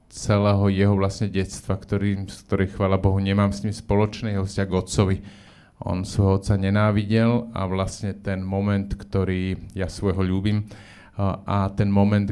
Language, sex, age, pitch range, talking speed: Slovak, male, 30-49, 90-100 Hz, 155 wpm